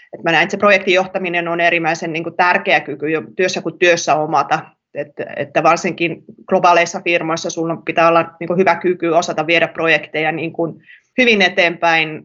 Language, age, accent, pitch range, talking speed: Finnish, 30-49, native, 170-210 Hz, 145 wpm